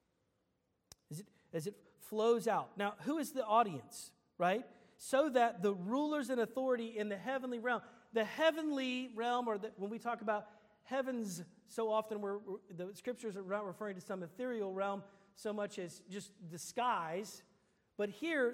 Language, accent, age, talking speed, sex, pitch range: English, American, 40-59, 165 wpm, male, 200-260 Hz